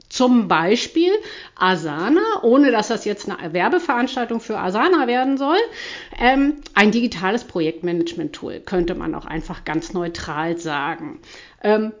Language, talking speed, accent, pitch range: German, 125 wpm, German, 195-310 Hz